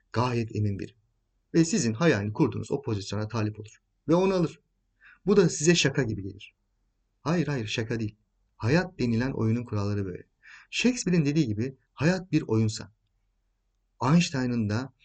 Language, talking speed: Turkish, 150 wpm